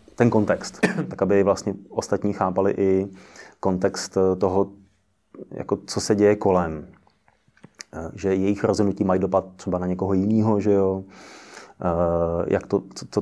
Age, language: 30-49, Czech